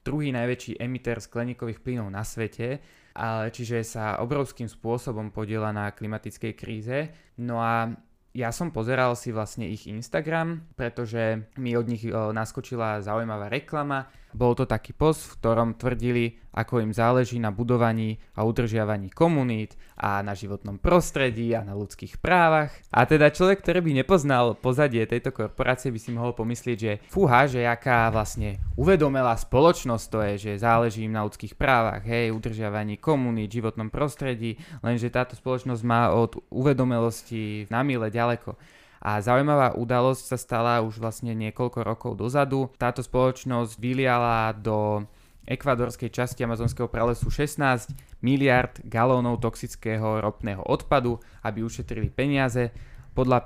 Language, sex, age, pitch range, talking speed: Slovak, male, 20-39, 110-130 Hz, 140 wpm